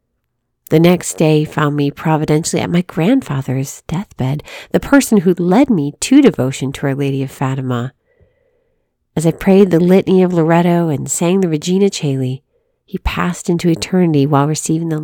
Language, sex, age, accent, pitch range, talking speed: English, female, 40-59, American, 150-215 Hz, 165 wpm